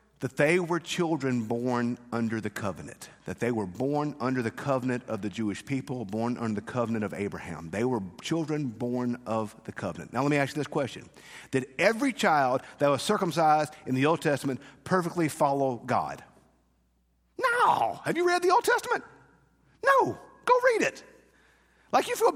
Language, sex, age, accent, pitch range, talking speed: English, male, 50-69, American, 100-170 Hz, 175 wpm